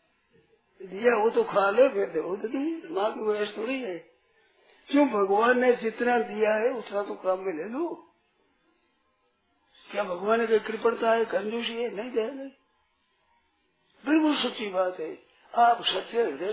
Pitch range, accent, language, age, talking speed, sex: 210-335 Hz, native, Hindi, 50-69, 120 wpm, male